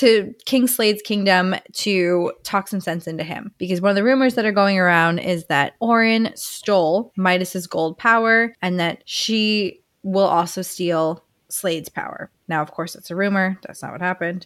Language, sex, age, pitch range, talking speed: English, female, 20-39, 175-210 Hz, 185 wpm